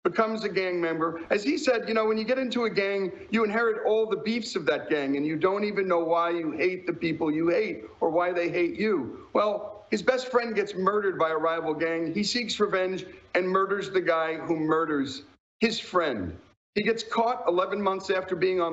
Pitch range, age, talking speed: 175-230 Hz, 50-69, 220 wpm